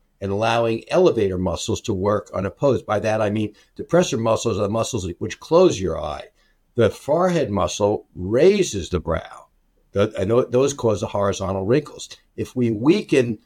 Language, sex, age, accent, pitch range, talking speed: English, male, 60-79, American, 100-125 Hz, 155 wpm